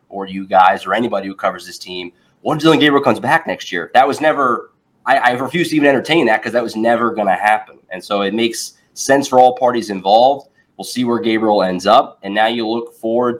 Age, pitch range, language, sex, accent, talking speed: 20-39, 100-130 Hz, English, male, American, 235 wpm